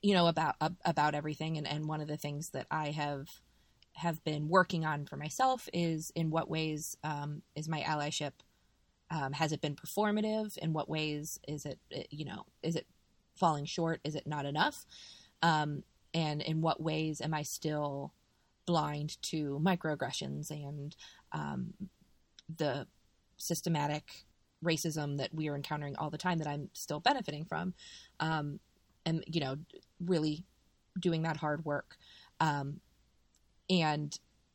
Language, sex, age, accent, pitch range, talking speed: English, female, 20-39, American, 150-175 Hz, 155 wpm